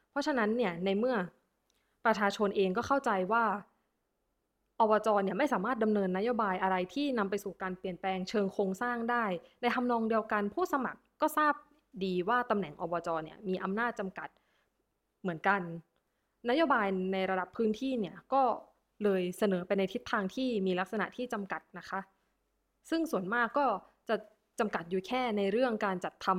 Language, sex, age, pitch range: Thai, female, 20-39, 190-240 Hz